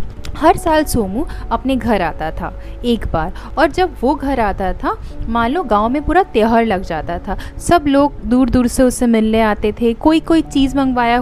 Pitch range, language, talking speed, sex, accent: 230-315 Hz, Hindi, 200 wpm, female, native